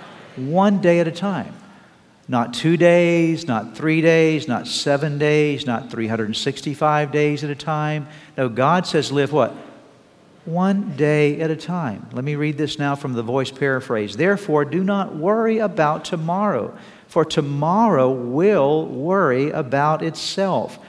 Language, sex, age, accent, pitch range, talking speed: English, male, 50-69, American, 140-180 Hz, 145 wpm